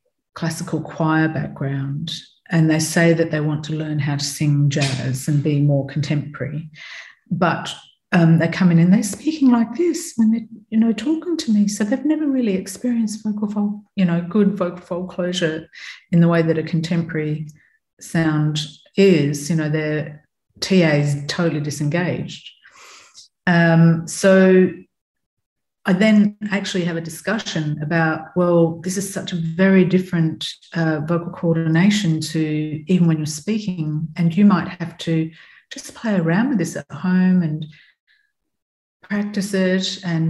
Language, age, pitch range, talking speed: English, 50-69, 155-190 Hz, 150 wpm